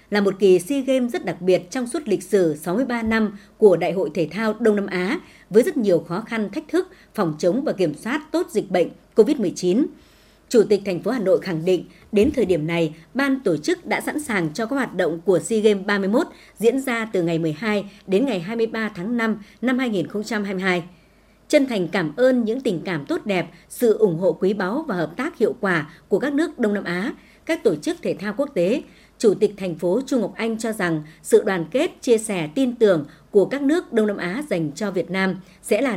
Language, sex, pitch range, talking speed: Vietnamese, male, 180-250 Hz, 245 wpm